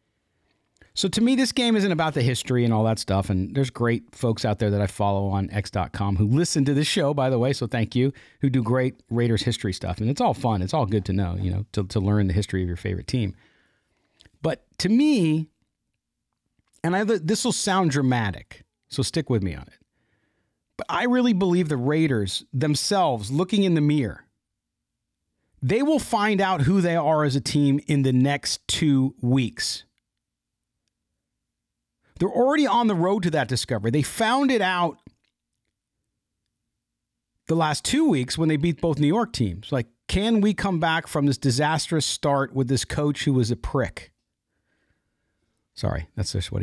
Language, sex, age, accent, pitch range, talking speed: English, male, 40-59, American, 115-180 Hz, 185 wpm